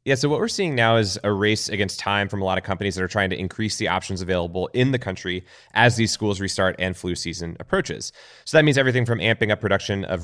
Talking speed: 260 wpm